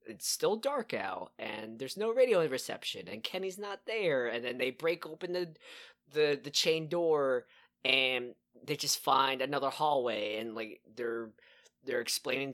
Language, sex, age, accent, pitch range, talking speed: English, male, 20-39, American, 115-155 Hz, 165 wpm